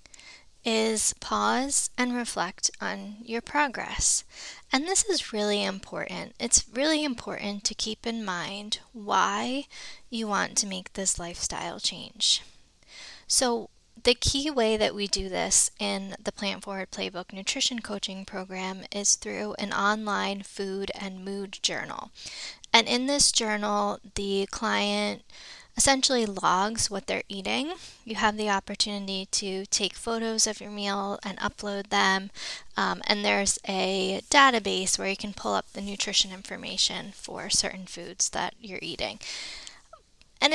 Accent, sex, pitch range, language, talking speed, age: American, female, 195-230 Hz, English, 140 wpm, 10-29